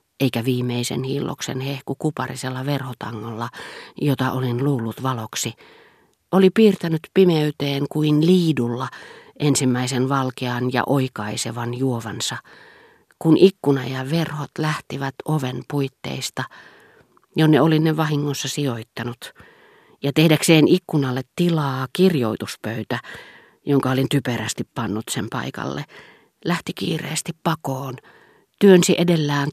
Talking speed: 100 wpm